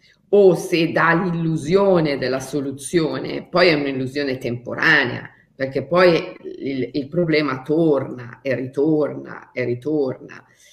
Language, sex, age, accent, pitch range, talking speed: Italian, female, 50-69, native, 140-190 Hz, 110 wpm